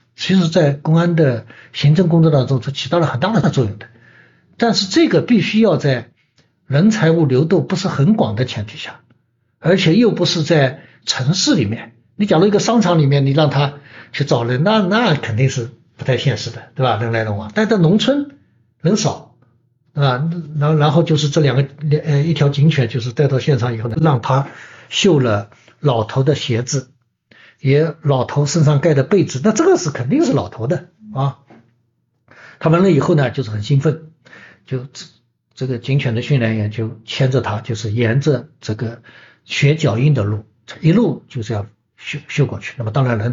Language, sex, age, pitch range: Chinese, male, 60-79, 120-170 Hz